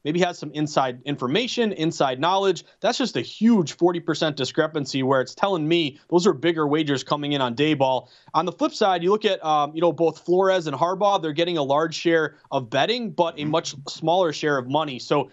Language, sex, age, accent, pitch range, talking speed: English, male, 30-49, American, 150-175 Hz, 215 wpm